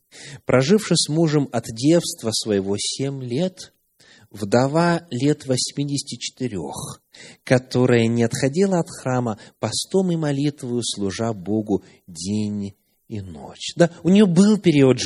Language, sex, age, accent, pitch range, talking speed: Russian, male, 30-49, native, 115-165 Hz, 115 wpm